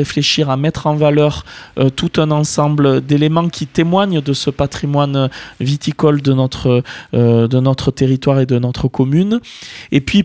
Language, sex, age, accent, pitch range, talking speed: French, male, 20-39, French, 130-155 Hz, 165 wpm